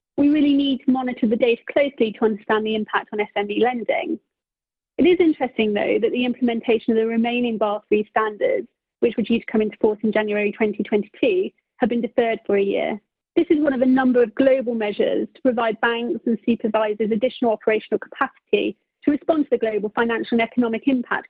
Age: 30-49